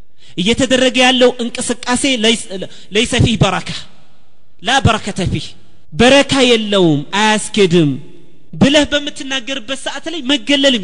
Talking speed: 100 wpm